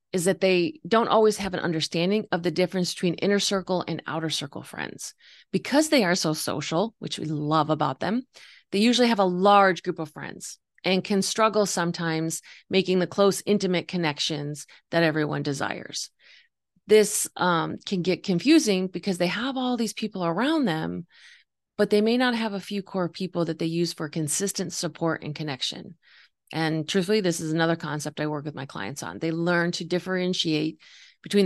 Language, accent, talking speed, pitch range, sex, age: English, American, 180 wpm, 160-210 Hz, female, 30-49